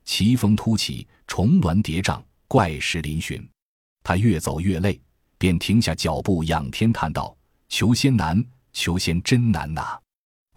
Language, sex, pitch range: Chinese, male, 80-110 Hz